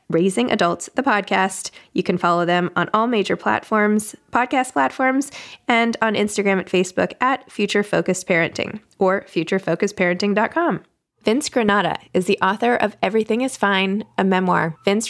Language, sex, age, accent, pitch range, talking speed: English, female, 20-39, American, 175-220 Hz, 145 wpm